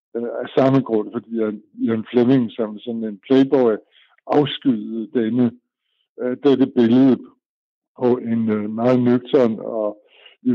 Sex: male